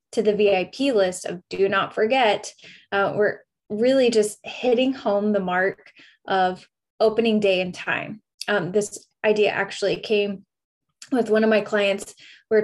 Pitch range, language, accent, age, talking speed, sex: 195-240 Hz, English, American, 10-29, 155 wpm, female